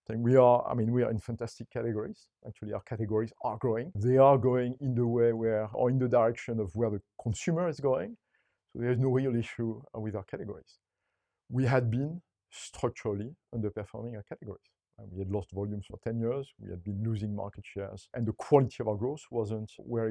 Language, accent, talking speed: English, French, 205 wpm